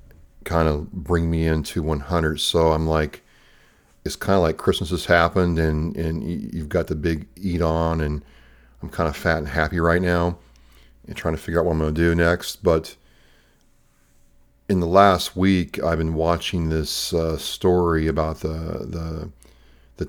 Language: English